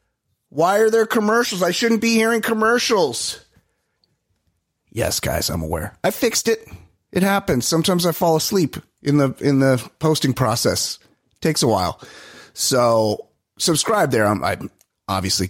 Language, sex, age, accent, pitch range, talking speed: English, male, 30-49, American, 110-160 Hz, 145 wpm